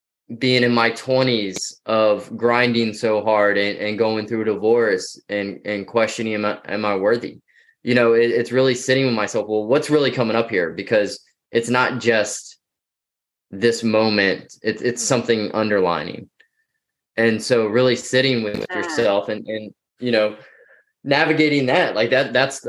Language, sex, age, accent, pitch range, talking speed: English, male, 20-39, American, 110-140 Hz, 160 wpm